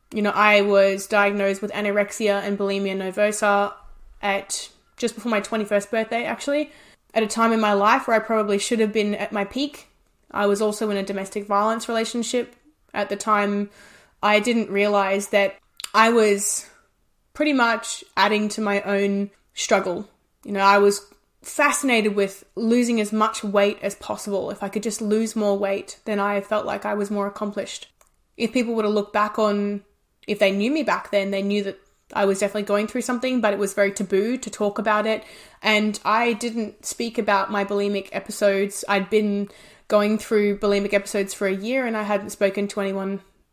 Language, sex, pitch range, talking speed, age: English, female, 200-220 Hz, 190 wpm, 20-39